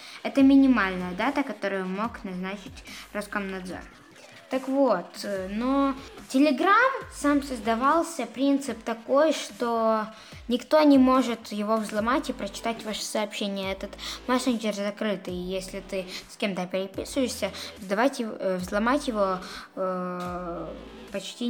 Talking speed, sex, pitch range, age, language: 100 wpm, female, 200-270 Hz, 20-39, Russian